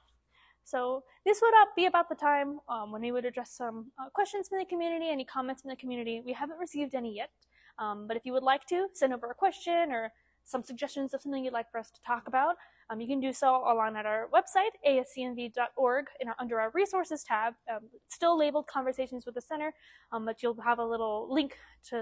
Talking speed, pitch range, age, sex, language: 225 wpm, 235-295 Hz, 20-39, female, English